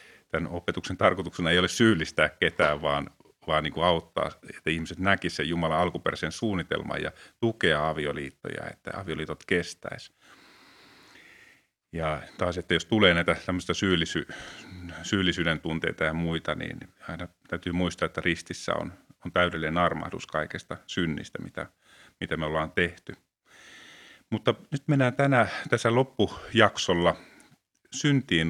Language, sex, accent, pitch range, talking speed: Finnish, male, native, 80-105 Hz, 125 wpm